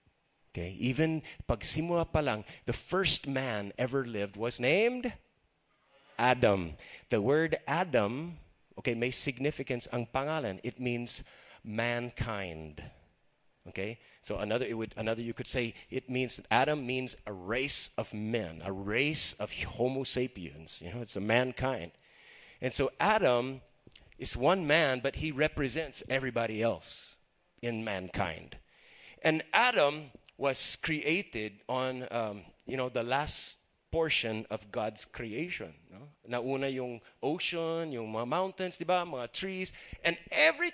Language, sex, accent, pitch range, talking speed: English, male, American, 115-155 Hz, 135 wpm